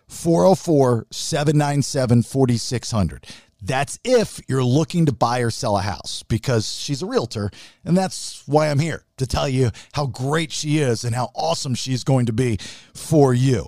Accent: American